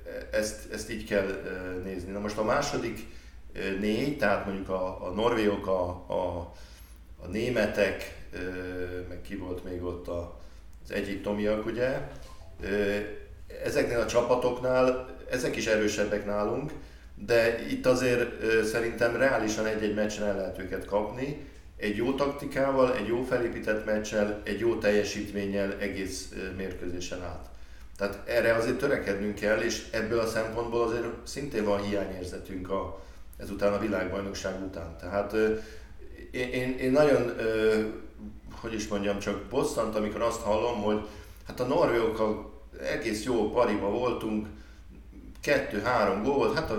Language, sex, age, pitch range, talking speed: Hungarian, male, 50-69, 95-115 Hz, 130 wpm